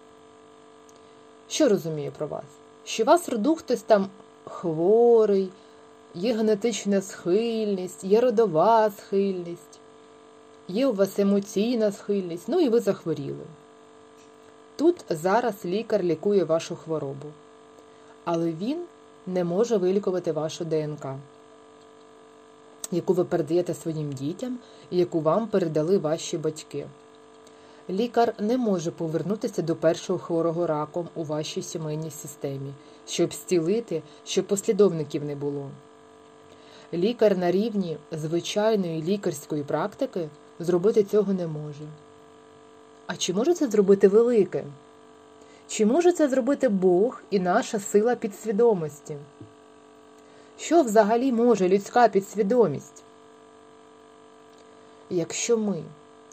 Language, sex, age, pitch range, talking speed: Ukrainian, female, 30-49, 155-220 Hz, 105 wpm